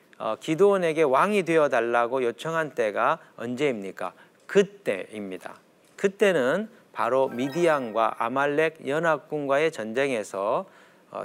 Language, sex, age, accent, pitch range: Korean, male, 40-59, native, 140-195 Hz